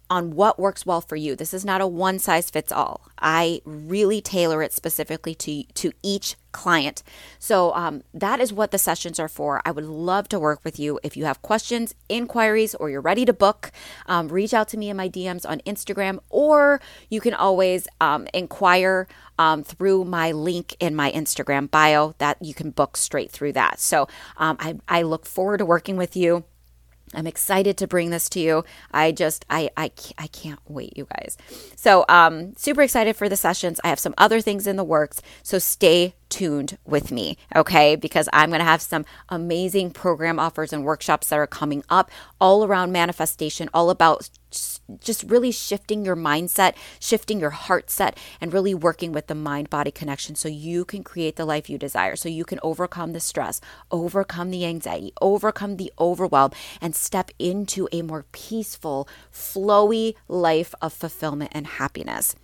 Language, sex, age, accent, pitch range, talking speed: English, female, 30-49, American, 155-195 Hz, 185 wpm